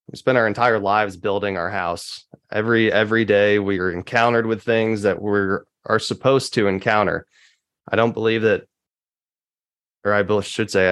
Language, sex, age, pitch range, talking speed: English, male, 20-39, 100-110 Hz, 165 wpm